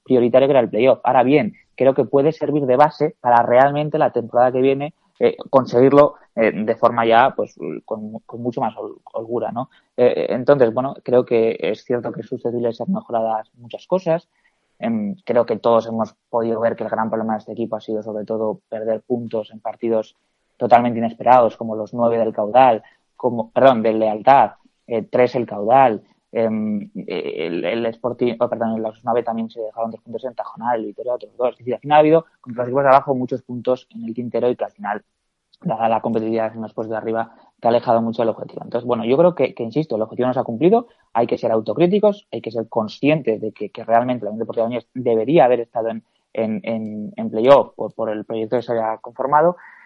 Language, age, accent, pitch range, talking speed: Spanish, 20-39, Spanish, 115-135 Hz, 210 wpm